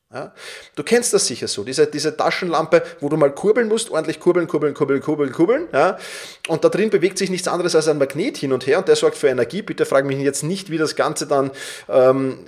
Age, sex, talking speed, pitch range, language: 30-49, male, 225 wpm, 135-180 Hz, German